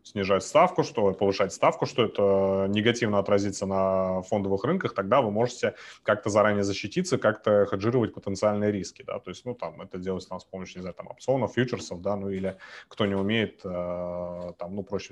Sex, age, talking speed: male, 30-49, 185 wpm